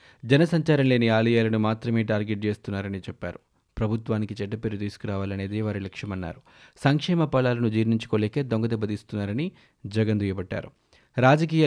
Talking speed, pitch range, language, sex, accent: 100 wpm, 105-130 Hz, Telugu, male, native